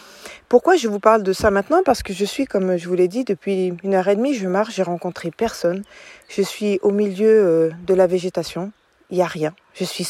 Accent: French